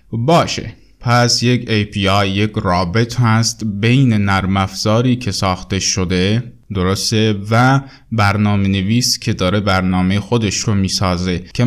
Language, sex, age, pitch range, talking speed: Persian, male, 20-39, 95-115 Hz, 130 wpm